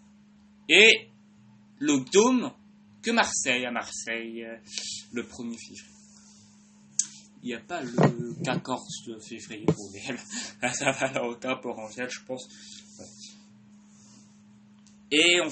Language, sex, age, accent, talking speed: English, male, 20-39, French, 100 wpm